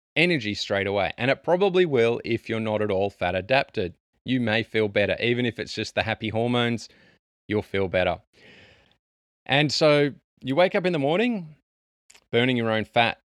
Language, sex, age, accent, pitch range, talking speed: English, male, 20-39, Australian, 100-125 Hz, 180 wpm